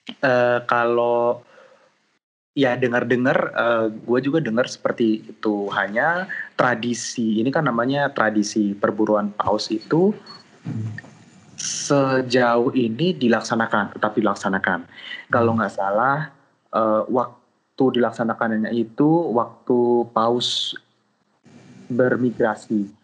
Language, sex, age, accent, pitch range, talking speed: Indonesian, male, 20-39, native, 105-125 Hz, 90 wpm